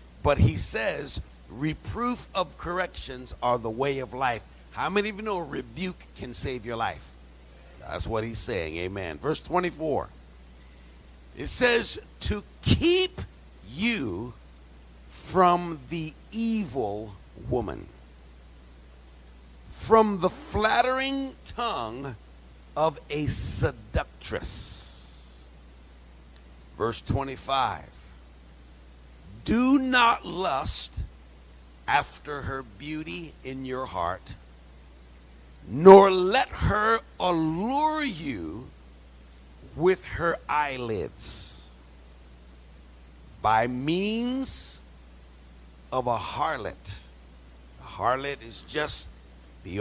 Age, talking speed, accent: 60-79, 90 wpm, American